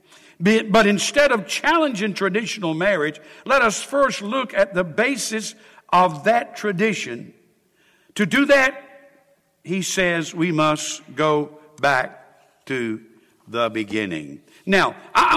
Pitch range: 160-220 Hz